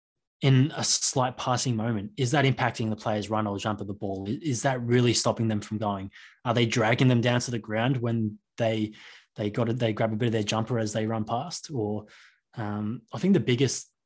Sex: male